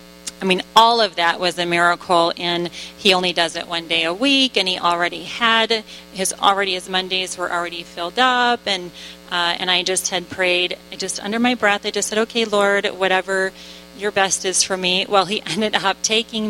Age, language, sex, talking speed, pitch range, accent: 30-49, English, female, 205 wpm, 175-200 Hz, American